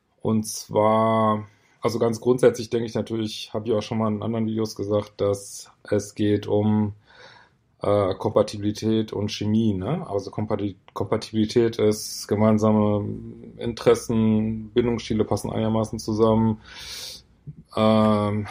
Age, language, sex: 20-39, German, male